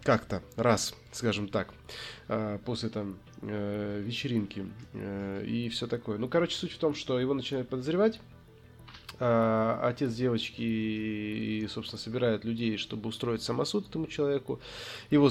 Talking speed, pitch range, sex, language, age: 120 wpm, 110-125 Hz, male, Russian, 20-39